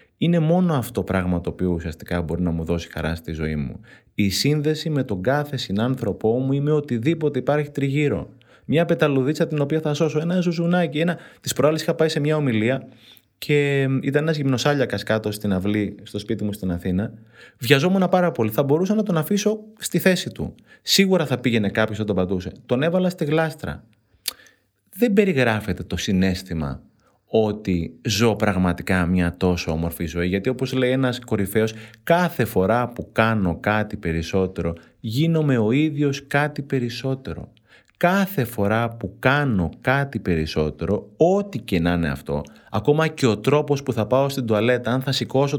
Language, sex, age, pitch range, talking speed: Greek, male, 30-49, 100-150 Hz, 165 wpm